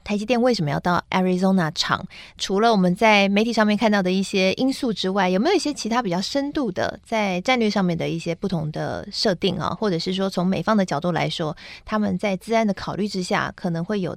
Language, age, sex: Chinese, 20-39, female